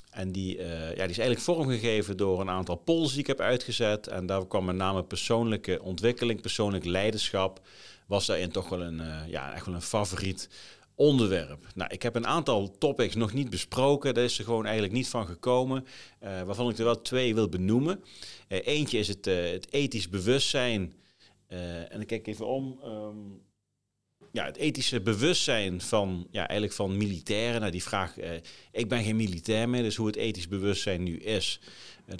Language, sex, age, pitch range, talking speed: Dutch, male, 40-59, 95-115 Hz, 190 wpm